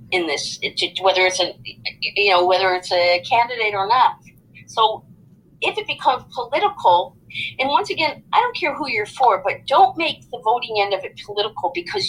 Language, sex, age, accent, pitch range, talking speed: English, female, 40-59, American, 200-310 Hz, 185 wpm